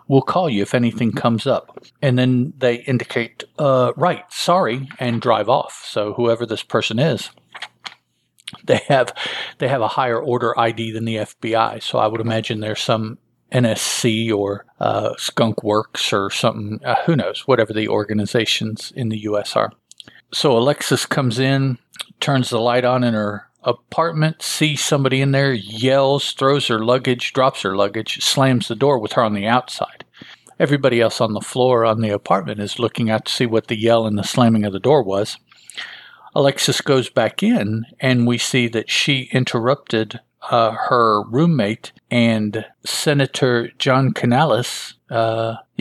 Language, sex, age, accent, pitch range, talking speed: English, male, 50-69, American, 110-130 Hz, 165 wpm